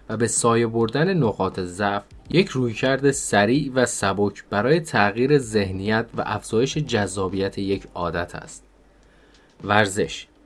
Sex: male